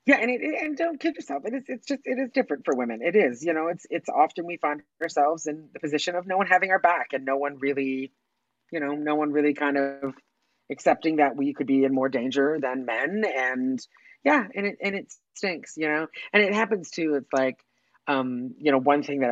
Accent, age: American, 30-49